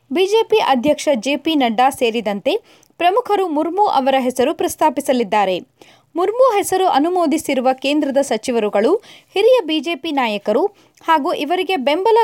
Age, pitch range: 20-39, 265-380 Hz